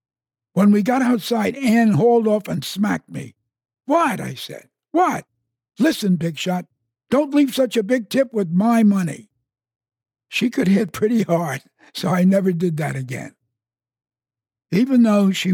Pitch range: 125-205 Hz